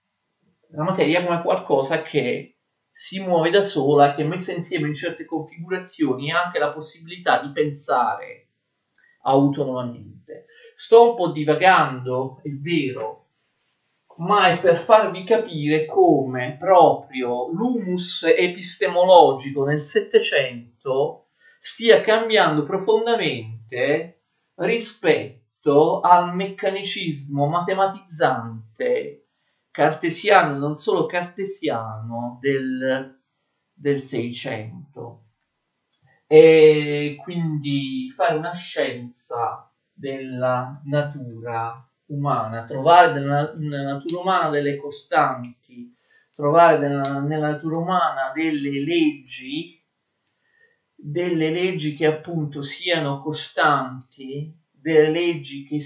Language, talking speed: Italian, 90 wpm